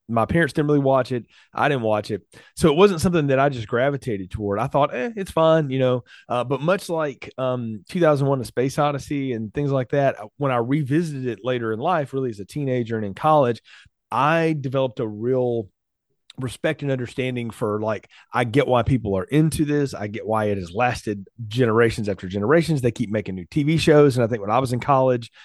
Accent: American